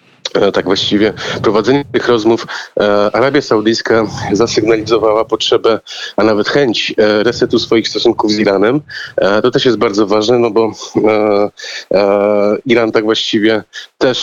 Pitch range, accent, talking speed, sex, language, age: 110-125 Hz, native, 140 wpm, male, Polish, 30-49